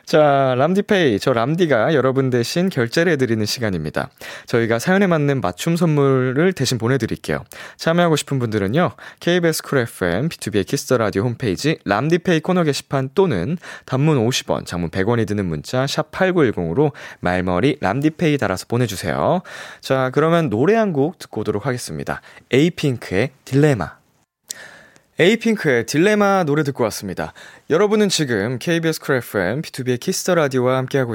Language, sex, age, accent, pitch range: Korean, male, 20-39, native, 115-175 Hz